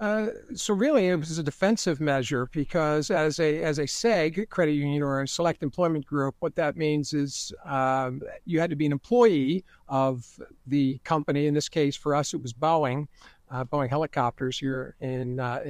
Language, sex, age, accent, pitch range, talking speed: English, male, 60-79, American, 140-175 Hz, 185 wpm